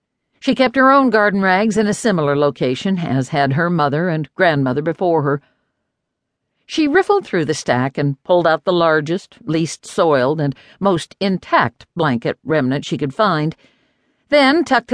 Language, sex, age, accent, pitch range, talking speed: English, female, 60-79, American, 155-225 Hz, 160 wpm